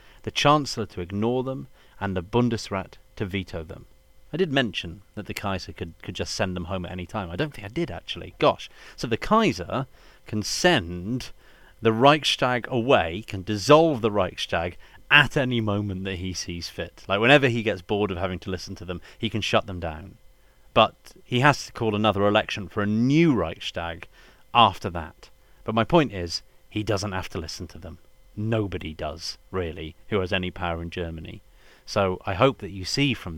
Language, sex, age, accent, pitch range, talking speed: English, male, 30-49, British, 90-115 Hz, 195 wpm